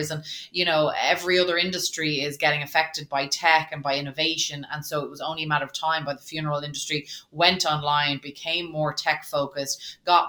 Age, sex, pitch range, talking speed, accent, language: 20-39, female, 150-170 Hz, 200 wpm, Irish, English